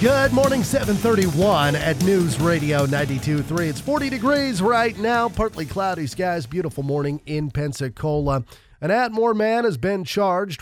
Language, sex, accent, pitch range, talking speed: English, male, American, 130-175 Hz, 140 wpm